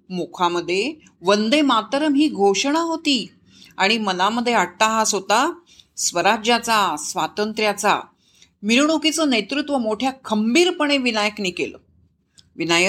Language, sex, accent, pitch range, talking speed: Marathi, female, native, 190-275 Hz, 90 wpm